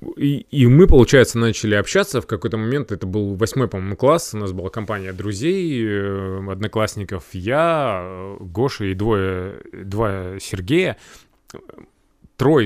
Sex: male